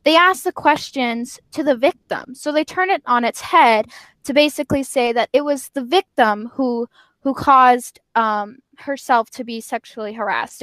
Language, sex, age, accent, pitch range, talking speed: English, female, 10-29, American, 225-275 Hz, 175 wpm